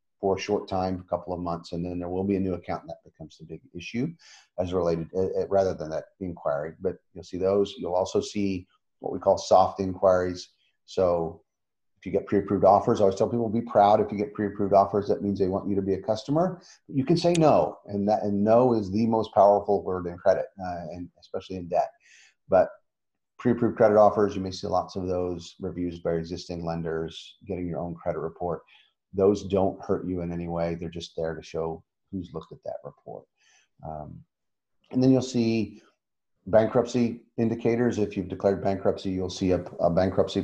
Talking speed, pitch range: 205 wpm, 90-110 Hz